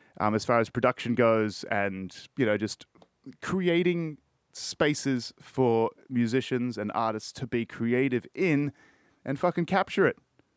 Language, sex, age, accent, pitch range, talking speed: English, male, 20-39, Australian, 115-150 Hz, 135 wpm